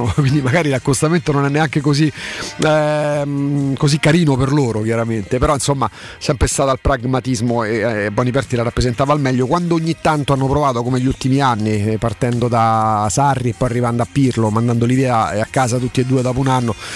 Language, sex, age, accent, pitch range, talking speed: Italian, male, 40-59, native, 125-160 Hz, 195 wpm